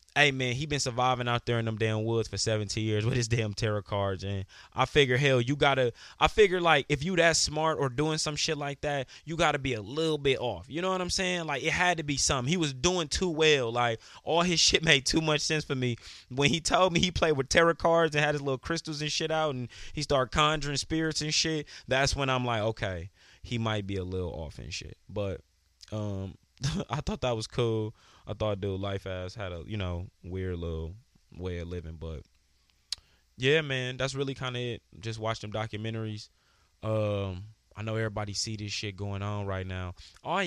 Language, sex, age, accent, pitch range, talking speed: English, male, 20-39, American, 105-150 Hz, 230 wpm